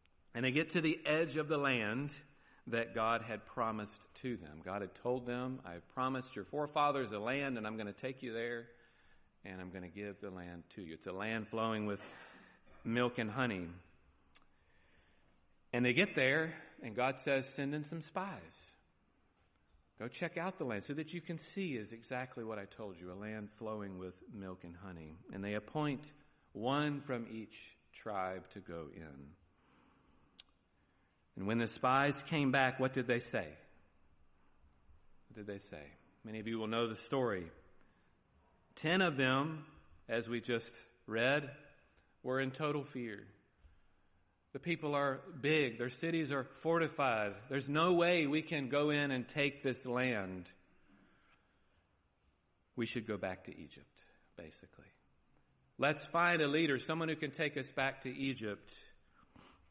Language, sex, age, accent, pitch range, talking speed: English, male, 50-69, American, 90-140 Hz, 165 wpm